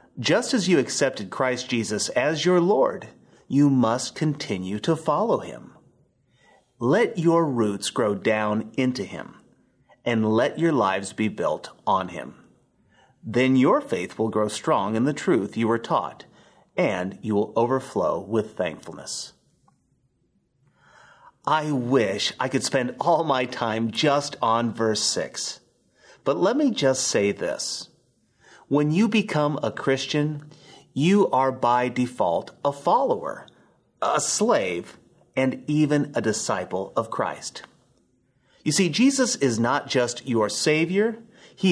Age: 30-49